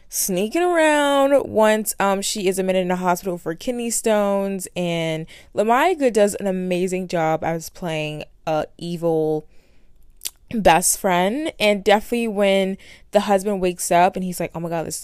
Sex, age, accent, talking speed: female, 20-39, American, 160 wpm